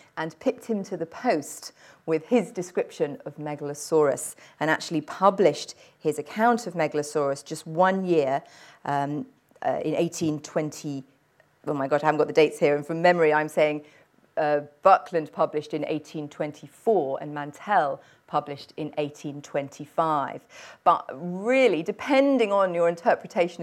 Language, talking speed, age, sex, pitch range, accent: English, 135 wpm, 40-59, female, 150-185 Hz, British